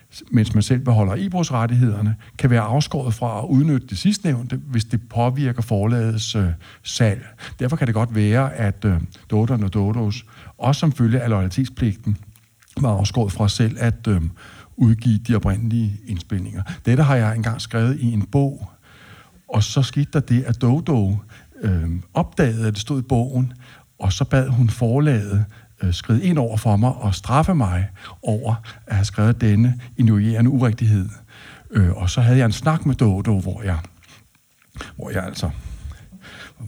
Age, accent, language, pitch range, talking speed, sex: 60-79, native, Danish, 105-130 Hz, 165 wpm, male